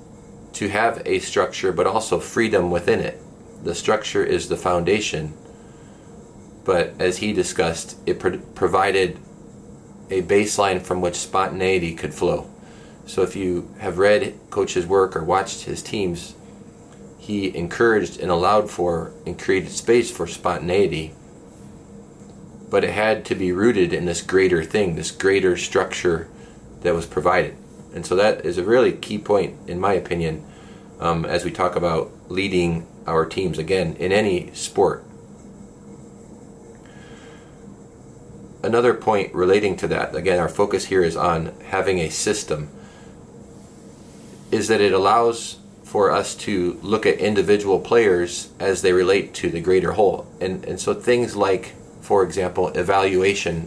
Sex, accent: male, American